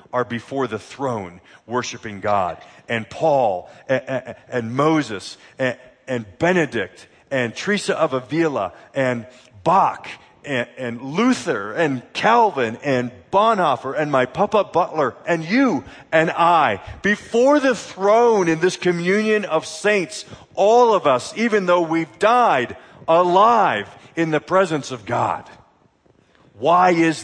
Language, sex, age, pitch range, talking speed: English, male, 40-59, 120-170 Hz, 130 wpm